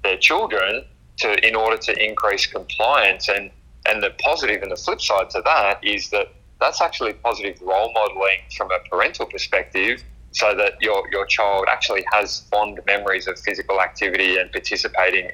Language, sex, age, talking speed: English, male, 20-39, 170 wpm